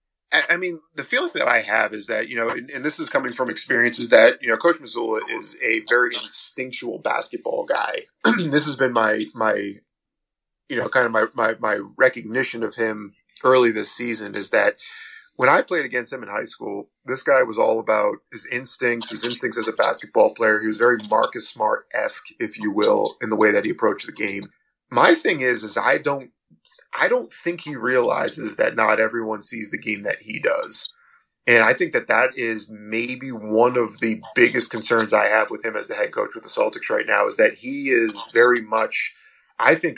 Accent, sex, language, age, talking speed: American, male, English, 30-49, 210 wpm